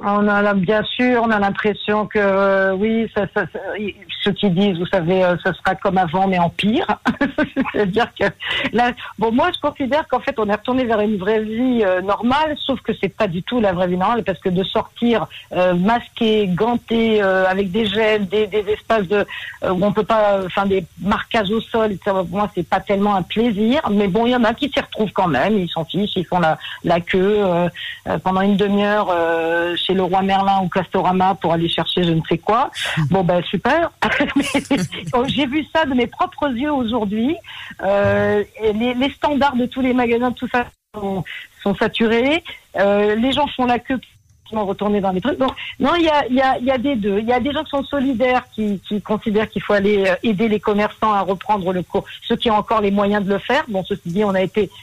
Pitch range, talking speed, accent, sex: 195-245 Hz, 225 wpm, French, female